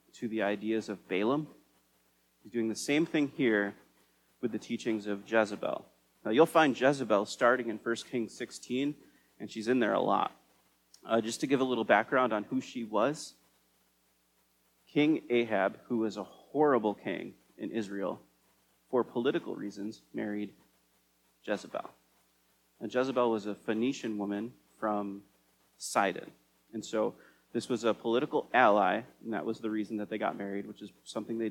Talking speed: 160 wpm